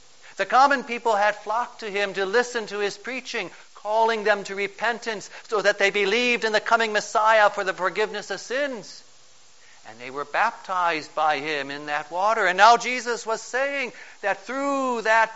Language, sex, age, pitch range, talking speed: English, male, 50-69, 180-235 Hz, 180 wpm